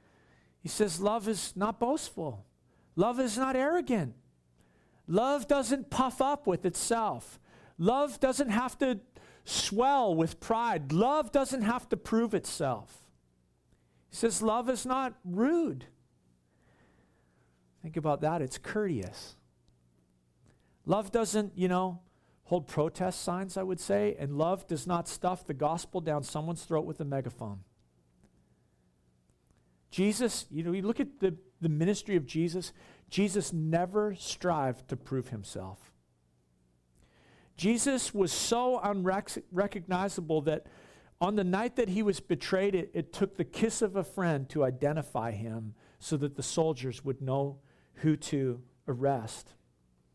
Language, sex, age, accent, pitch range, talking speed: English, male, 50-69, American, 125-205 Hz, 135 wpm